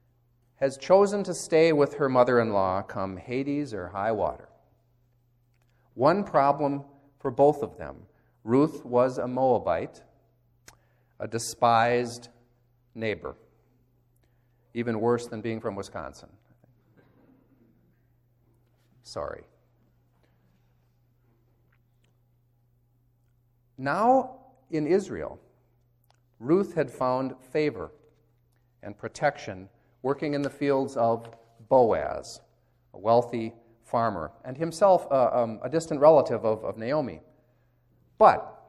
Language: English